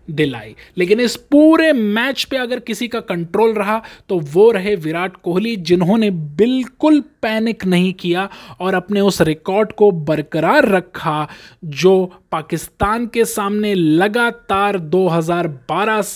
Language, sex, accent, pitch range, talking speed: Hindi, male, native, 165-215 Hz, 125 wpm